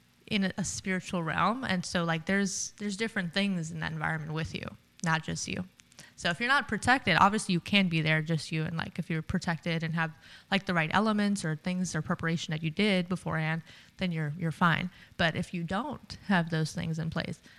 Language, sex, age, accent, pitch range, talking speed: English, female, 20-39, American, 160-190 Hz, 215 wpm